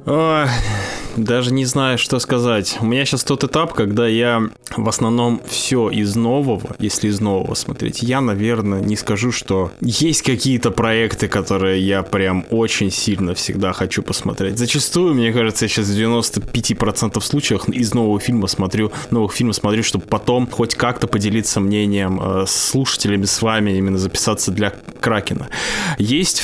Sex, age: male, 20-39